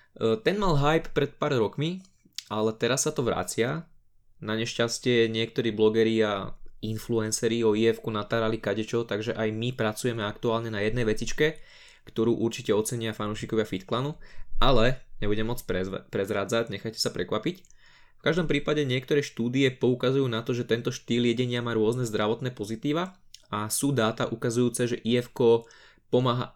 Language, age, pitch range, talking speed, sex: Slovak, 20-39, 110-125 Hz, 145 wpm, male